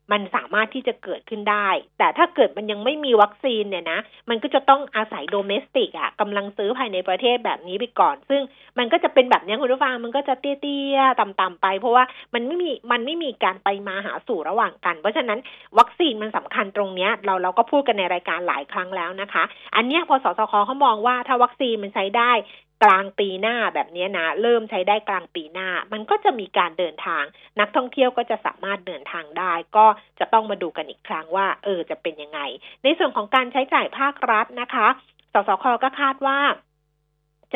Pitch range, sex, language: 190-255 Hz, female, Thai